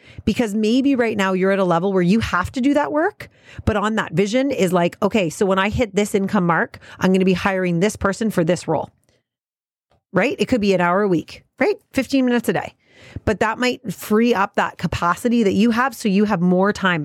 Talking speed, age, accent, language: 235 wpm, 30-49, American, English